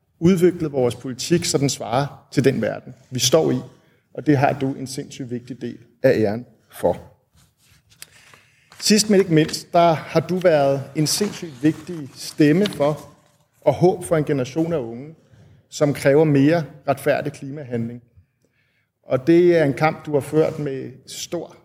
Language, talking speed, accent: Danish, 160 wpm, native